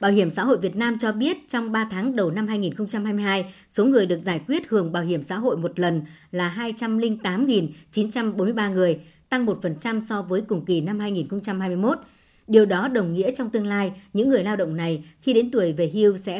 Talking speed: 200 wpm